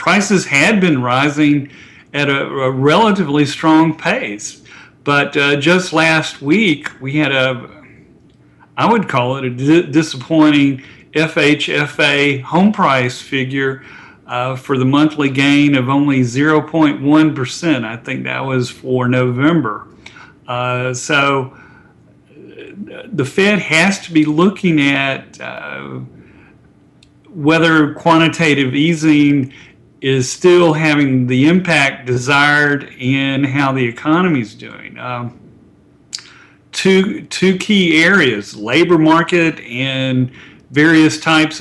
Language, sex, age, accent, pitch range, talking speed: English, male, 50-69, American, 130-155 Hz, 110 wpm